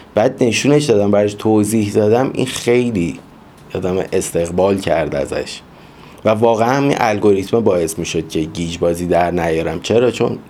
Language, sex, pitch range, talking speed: Persian, male, 95-115 Hz, 150 wpm